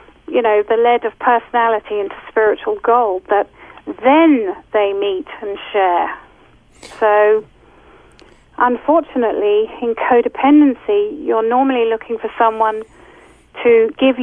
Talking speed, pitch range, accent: 110 wpm, 220-270 Hz, British